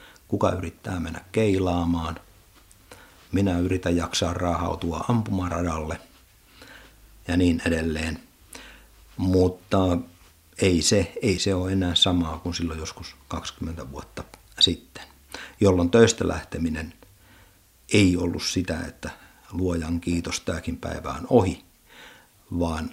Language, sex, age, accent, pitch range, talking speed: Finnish, male, 50-69, native, 85-95 Hz, 100 wpm